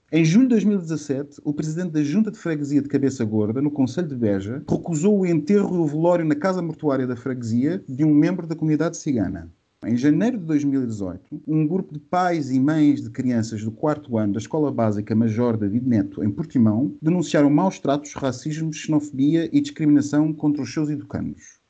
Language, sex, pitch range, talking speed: Portuguese, male, 125-155 Hz, 190 wpm